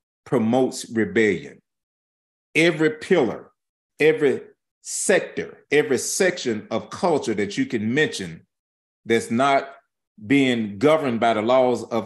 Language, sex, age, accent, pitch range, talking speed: English, male, 40-59, American, 100-135 Hz, 110 wpm